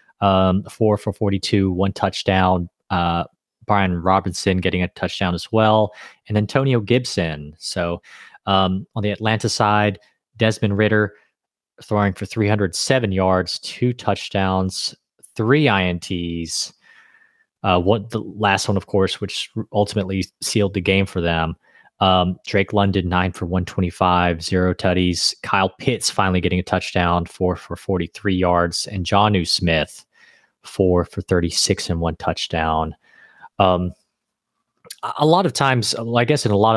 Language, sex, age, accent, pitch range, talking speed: English, male, 20-39, American, 90-105 Hz, 135 wpm